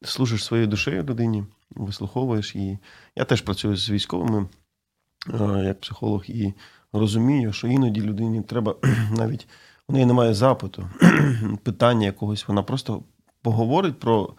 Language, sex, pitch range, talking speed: Ukrainian, male, 100-125 Hz, 125 wpm